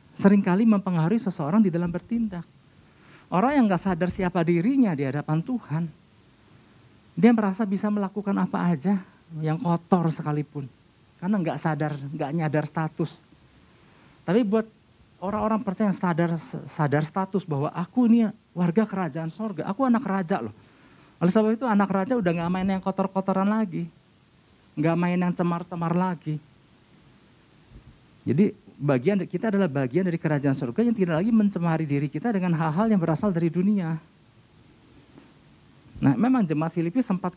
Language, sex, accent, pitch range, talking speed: Indonesian, male, native, 155-200 Hz, 145 wpm